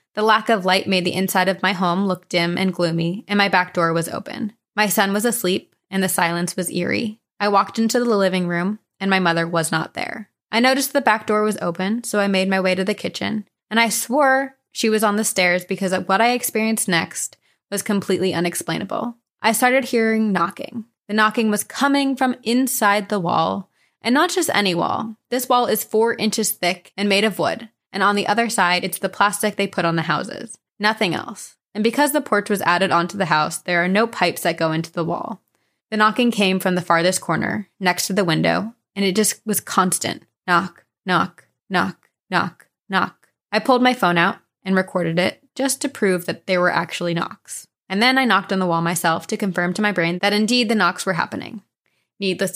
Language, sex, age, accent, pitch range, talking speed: English, female, 20-39, American, 180-225 Hz, 215 wpm